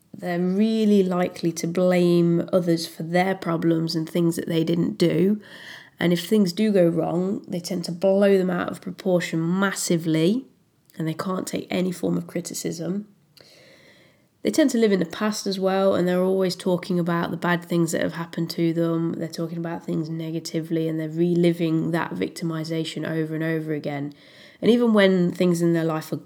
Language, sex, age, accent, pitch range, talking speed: English, female, 20-39, British, 165-195 Hz, 185 wpm